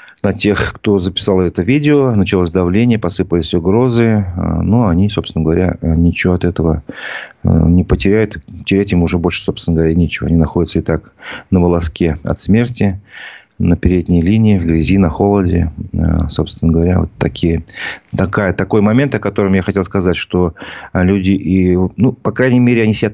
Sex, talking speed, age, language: male, 160 wpm, 30-49, Russian